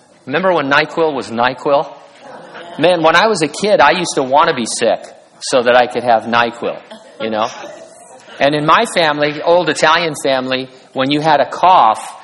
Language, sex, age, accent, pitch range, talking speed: English, male, 50-69, American, 130-175 Hz, 185 wpm